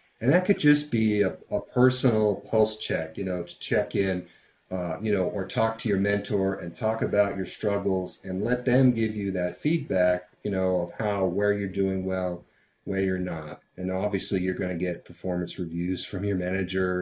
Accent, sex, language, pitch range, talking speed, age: American, male, English, 95-125 Hz, 200 wpm, 40-59